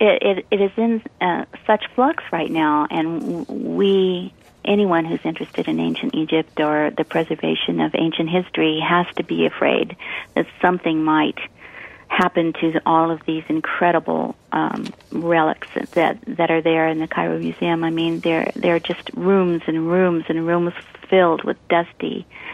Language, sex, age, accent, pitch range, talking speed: English, female, 50-69, American, 160-185 Hz, 160 wpm